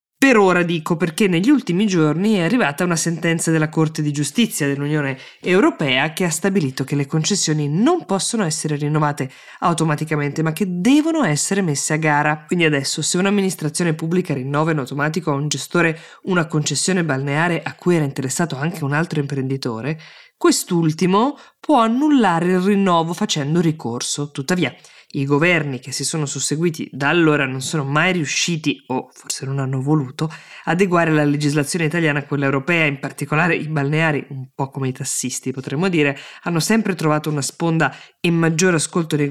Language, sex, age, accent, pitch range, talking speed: Italian, female, 20-39, native, 145-180 Hz, 165 wpm